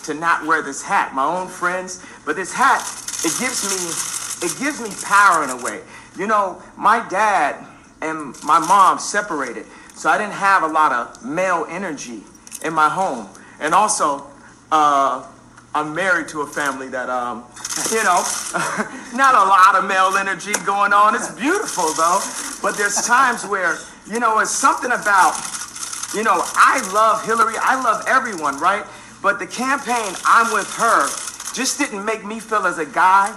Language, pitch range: English, 185-230 Hz